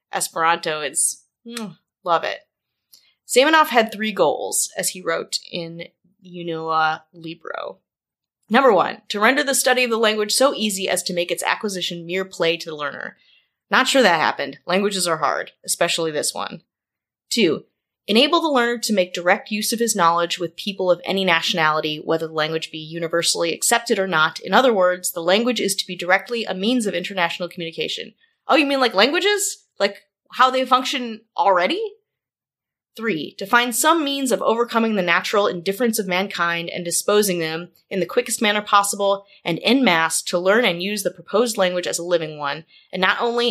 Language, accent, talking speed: English, American, 185 wpm